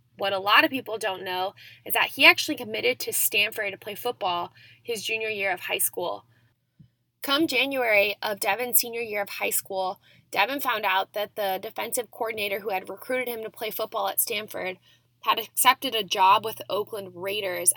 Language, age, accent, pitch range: English, 10-29, American, 185-230 Hz